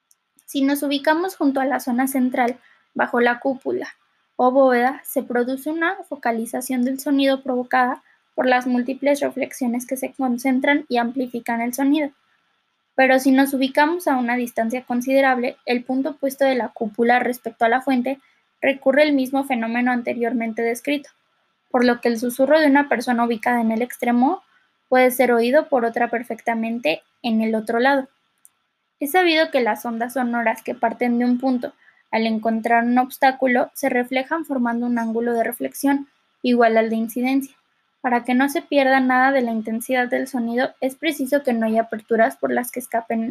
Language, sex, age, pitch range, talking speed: Spanish, female, 10-29, 240-275 Hz, 170 wpm